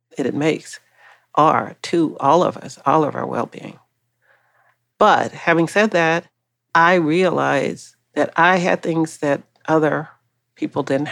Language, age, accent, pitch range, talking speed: English, 40-59, American, 135-170 Hz, 145 wpm